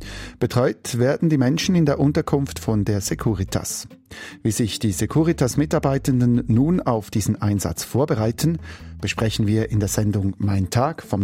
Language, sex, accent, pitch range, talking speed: German, male, German, 100-135 Hz, 145 wpm